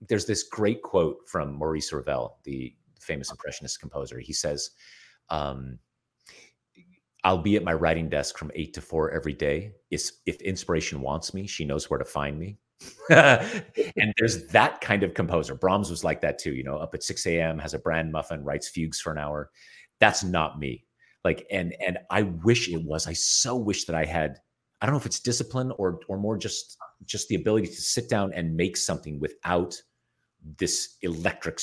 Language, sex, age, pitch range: English, male, 30-49, 80-110 Hz